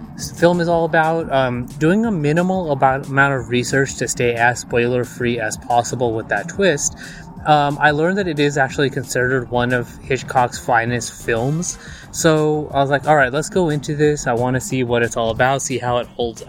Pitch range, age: 120-150 Hz, 20-39